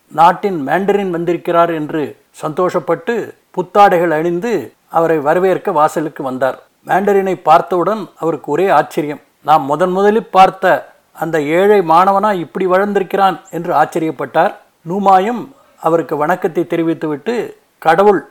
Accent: native